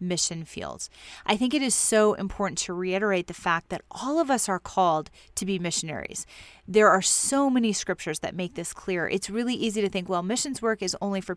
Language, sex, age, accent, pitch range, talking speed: English, female, 30-49, American, 180-220 Hz, 215 wpm